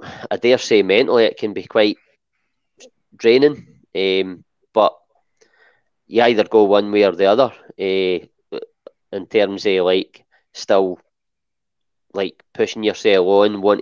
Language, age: English, 20-39